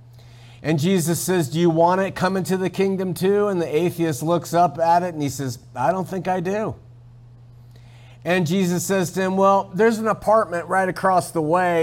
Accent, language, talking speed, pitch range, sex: American, English, 205 wpm, 125-190 Hz, male